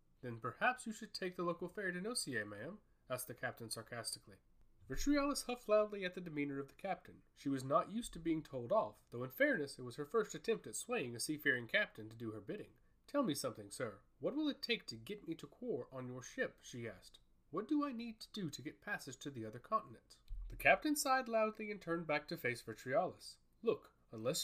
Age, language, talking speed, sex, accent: 30-49, English, 225 wpm, male, American